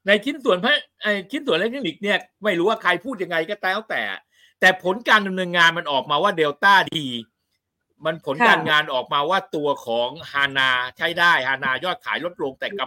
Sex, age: male, 60-79